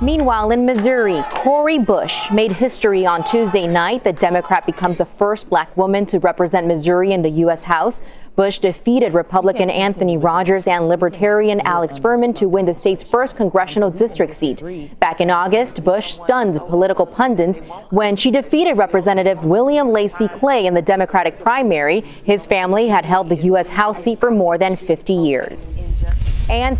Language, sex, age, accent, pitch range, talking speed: English, female, 20-39, American, 180-235 Hz, 165 wpm